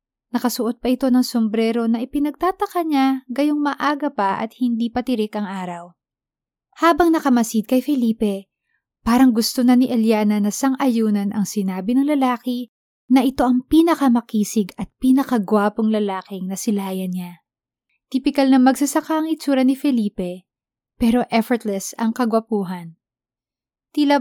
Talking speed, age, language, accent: 130 wpm, 20-39, Filipino, native